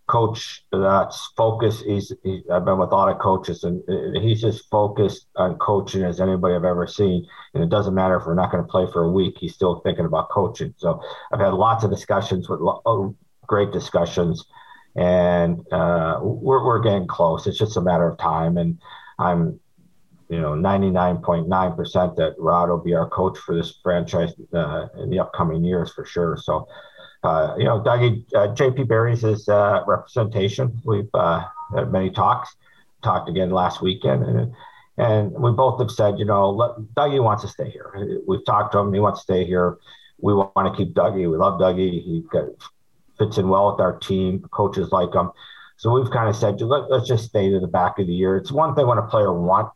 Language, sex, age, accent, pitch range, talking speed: English, male, 50-69, American, 90-110 Hz, 200 wpm